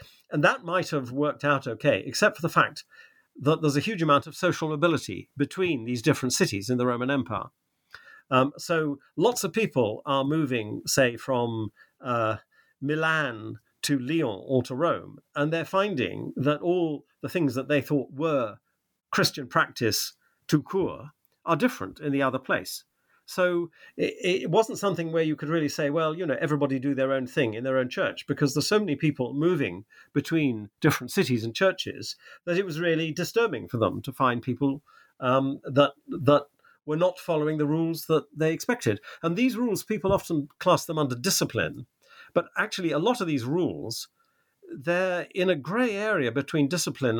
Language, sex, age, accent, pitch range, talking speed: English, male, 50-69, British, 130-170 Hz, 180 wpm